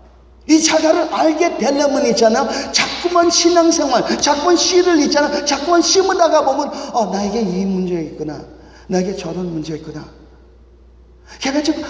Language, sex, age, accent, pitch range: Korean, male, 40-59, native, 155-245 Hz